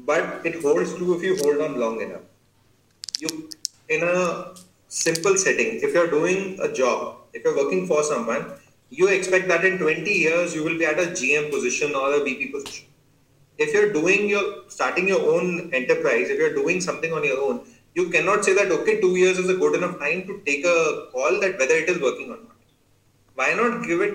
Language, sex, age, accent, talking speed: English, male, 30-49, Indian, 210 wpm